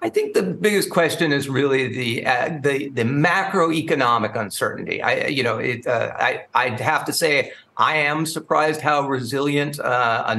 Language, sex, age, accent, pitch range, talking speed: English, male, 50-69, American, 125-155 Hz, 175 wpm